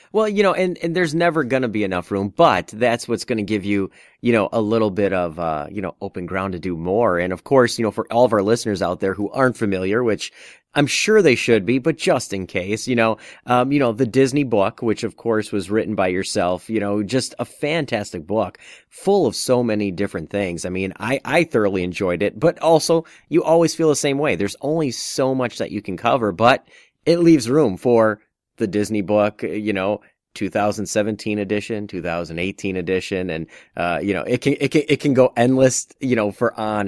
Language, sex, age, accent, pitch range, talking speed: English, male, 30-49, American, 100-130 Hz, 220 wpm